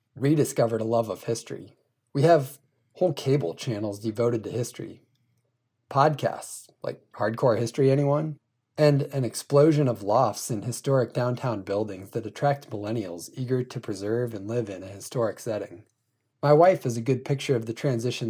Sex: male